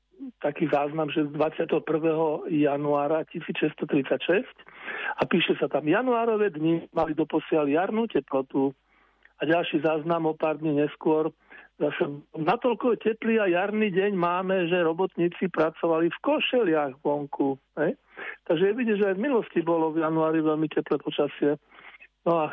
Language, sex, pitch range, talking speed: Slovak, male, 155-180 Hz, 145 wpm